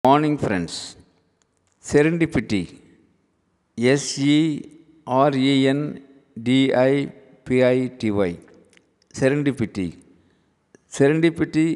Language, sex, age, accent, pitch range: Tamil, male, 50-69, native, 110-135 Hz